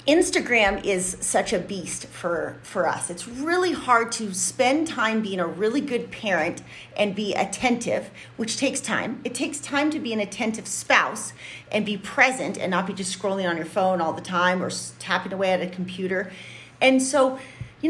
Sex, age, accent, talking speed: female, 30-49, American, 190 wpm